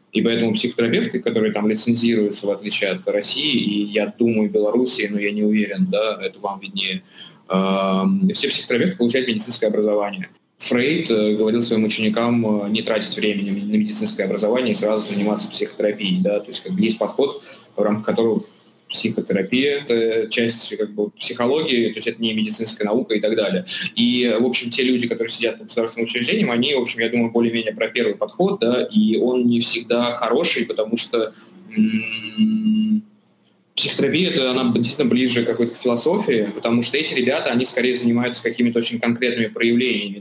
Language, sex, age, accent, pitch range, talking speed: Russian, male, 20-39, native, 105-125 Hz, 175 wpm